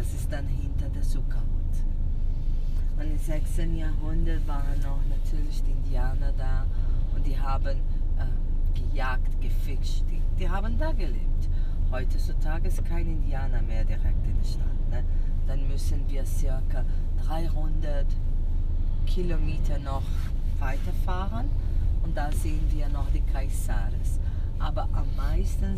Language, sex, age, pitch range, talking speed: German, female, 30-49, 80-90 Hz, 130 wpm